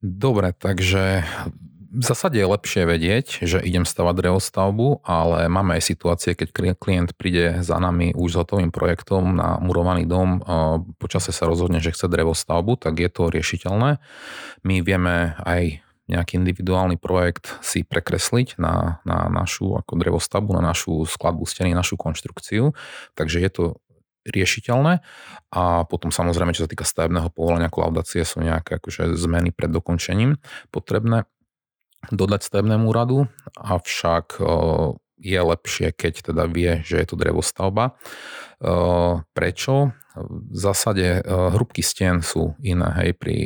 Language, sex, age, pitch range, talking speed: Slovak, male, 30-49, 85-95 Hz, 135 wpm